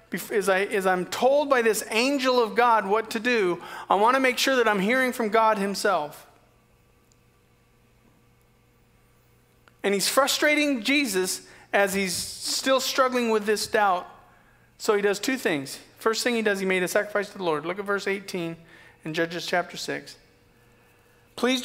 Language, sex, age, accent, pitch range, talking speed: English, male, 40-59, American, 190-245 Hz, 165 wpm